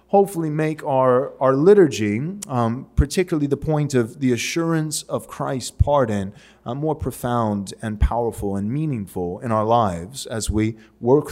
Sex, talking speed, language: male, 150 wpm, English